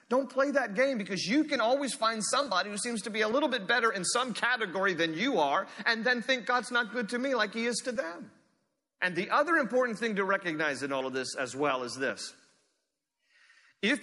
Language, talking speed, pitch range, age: English, 225 wpm, 175-270 Hz, 40-59